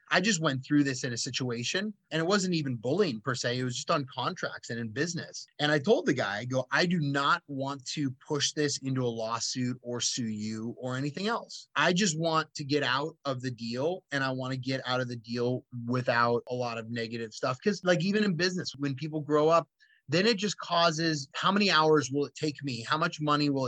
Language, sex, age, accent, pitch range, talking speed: English, male, 30-49, American, 130-175 Hz, 240 wpm